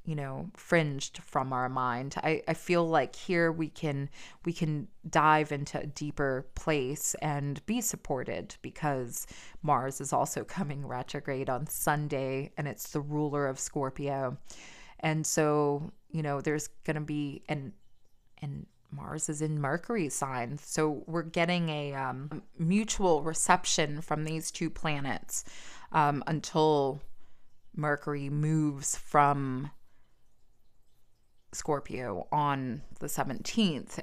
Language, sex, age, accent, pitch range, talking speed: English, female, 20-39, American, 140-160 Hz, 130 wpm